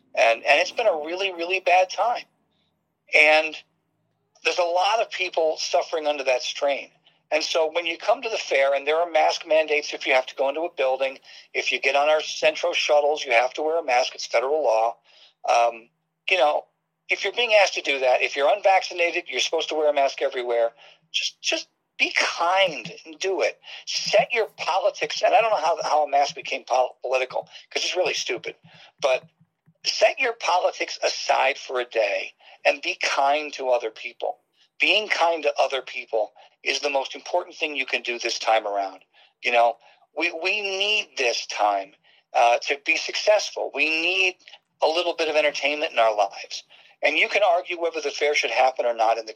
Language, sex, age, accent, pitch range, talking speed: English, male, 50-69, American, 130-170 Hz, 200 wpm